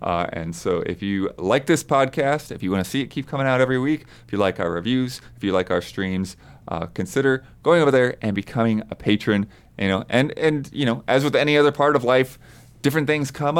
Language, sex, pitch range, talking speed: English, male, 100-135 Hz, 240 wpm